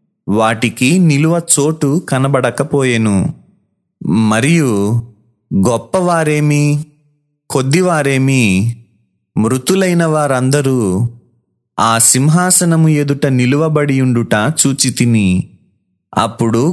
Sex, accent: male, native